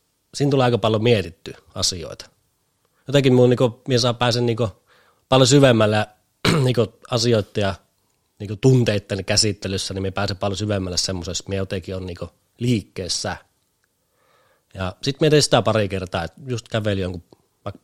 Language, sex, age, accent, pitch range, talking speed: Finnish, male, 30-49, native, 90-120 Hz, 135 wpm